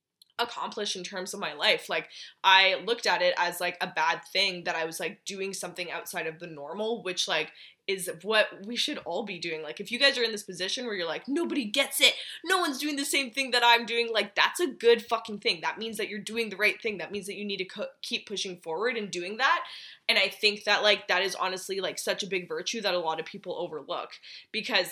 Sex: female